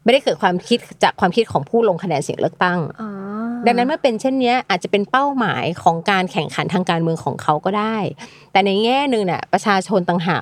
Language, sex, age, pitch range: Thai, female, 30-49, 170-220 Hz